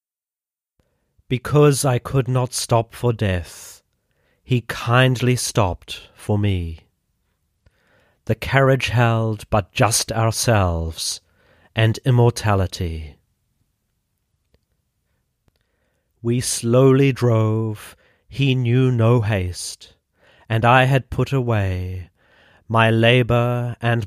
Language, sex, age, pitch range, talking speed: English, male, 40-59, 95-125 Hz, 85 wpm